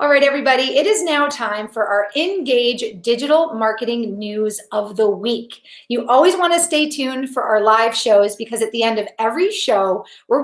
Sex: female